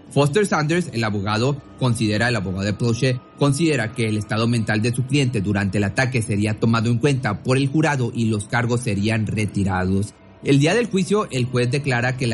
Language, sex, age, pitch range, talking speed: Spanish, male, 30-49, 105-140 Hz, 200 wpm